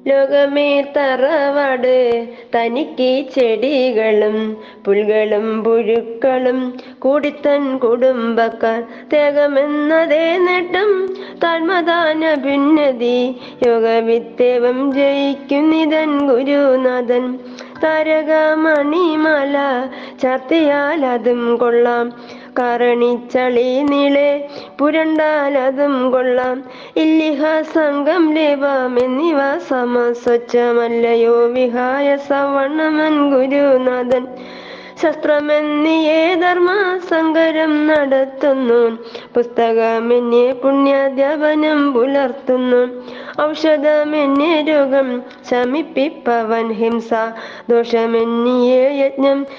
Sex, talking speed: female, 40 wpm